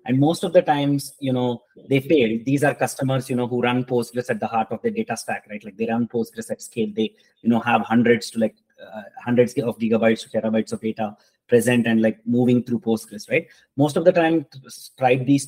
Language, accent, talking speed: English, Indian, 230 wpm